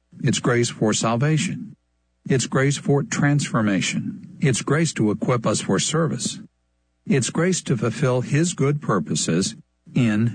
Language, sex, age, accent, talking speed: English, male, 60-79, American, 135 wpm